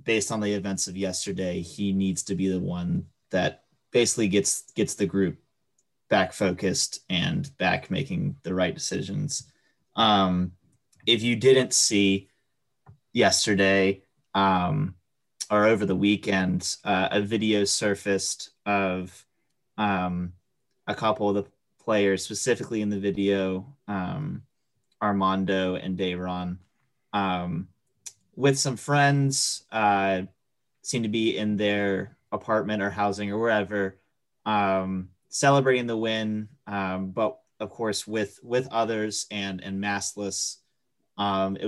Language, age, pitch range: English, 20-39, 95-110 Hz